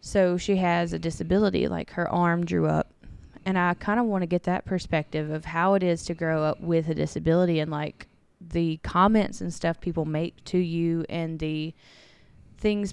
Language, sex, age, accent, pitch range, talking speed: English, female, 20-39, American, 155-175 Hz, 195 wpm